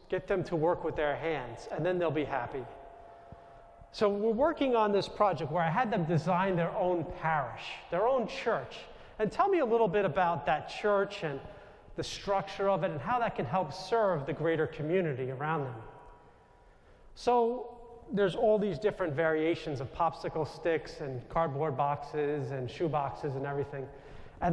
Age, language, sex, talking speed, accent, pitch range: 40-59, English, male, 175 wpm, American, 155-210 Hz